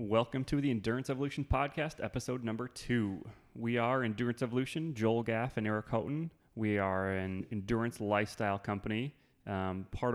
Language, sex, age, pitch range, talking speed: English, male, 30-49, 95-110 Hz, 155 wpm